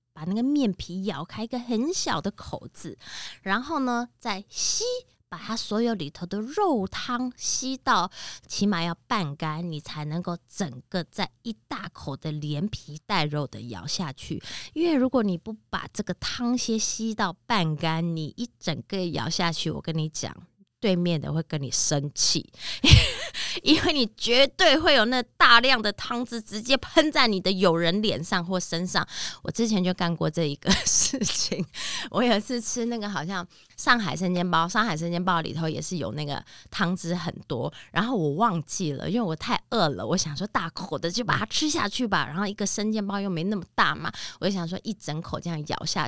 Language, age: Chinese, 20-39